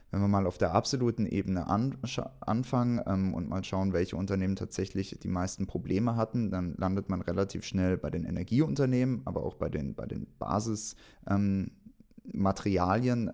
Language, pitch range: English, 90-110 Hz